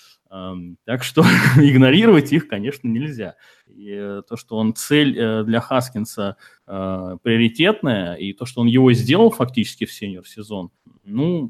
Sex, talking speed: male, 120 wpm